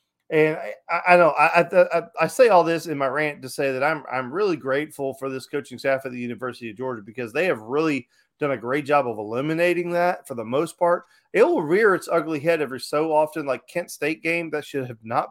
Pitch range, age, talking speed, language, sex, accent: 130-160 Hz, 30-49, 240 wpm, English, male, American